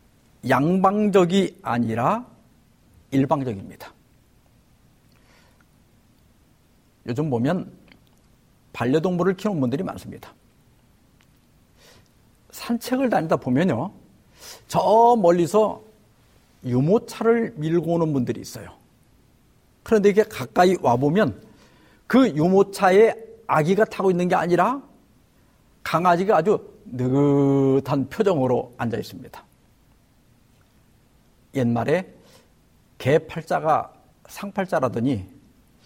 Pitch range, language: 140-230 Hz, Korean